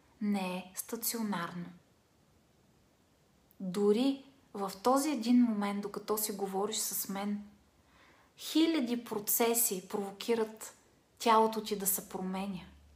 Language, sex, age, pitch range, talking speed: Bulgarian, female, 20-39, 195-235 Hz, 95 wpm